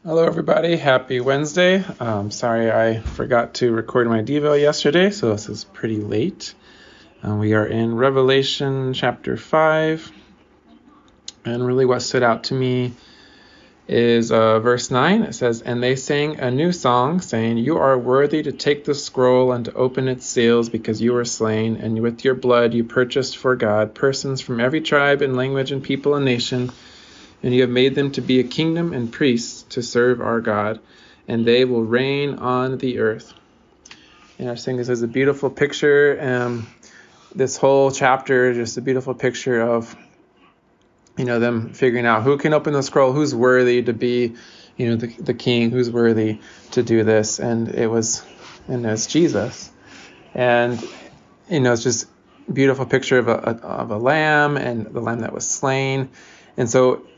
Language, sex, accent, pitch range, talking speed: English, male, American, 115-135 Hz, 180 wpm